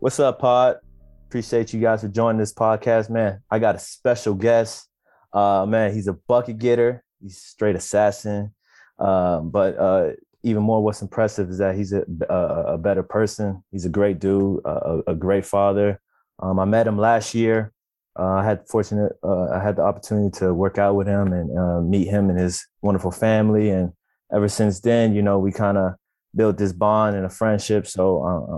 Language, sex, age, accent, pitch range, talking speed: English, male, 20-39, American, 95-110 Hz, 195 wpm